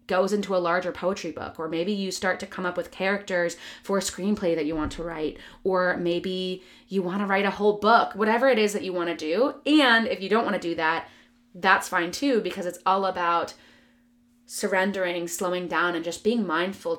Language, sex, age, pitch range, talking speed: English, female, 20-39, 170-220 Hz, 220 wpm